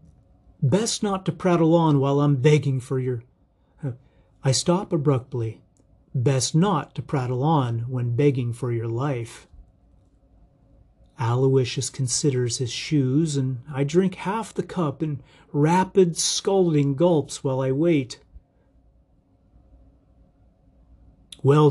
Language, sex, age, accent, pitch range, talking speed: English, male, 40-59, American, 115-155 Hz, 115 wpm